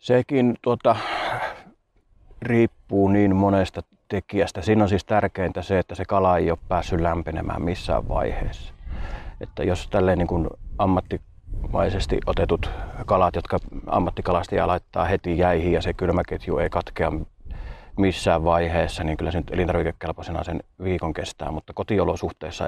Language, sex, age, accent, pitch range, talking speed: Finnish, male, 30-49, native, 80-95 Hz, 125 wpm